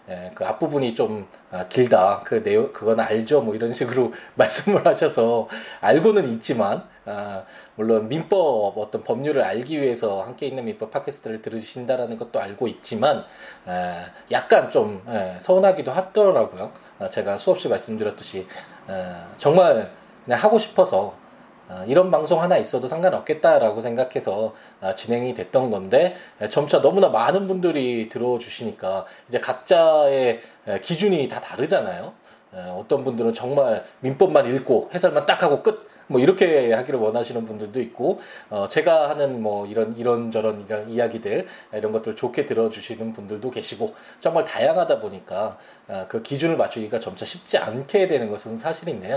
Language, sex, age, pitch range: Korean, male, 20-39, 110-170 Hz